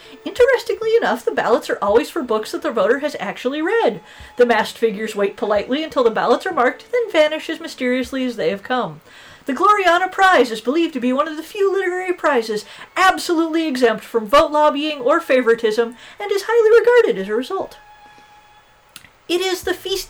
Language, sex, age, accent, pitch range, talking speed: English, female, 40-59, American, 210-335 Hz, 190 wpm